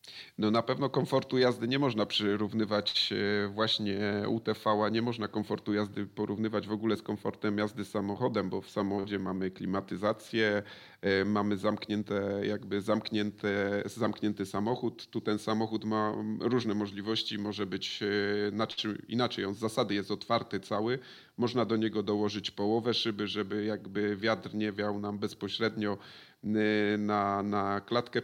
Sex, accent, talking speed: male, native, 135 wpm